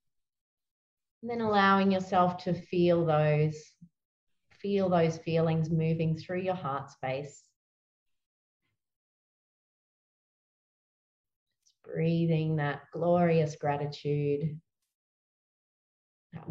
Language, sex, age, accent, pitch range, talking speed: English, female, 30-49, Australian, 140-170 Hz, 75 wpm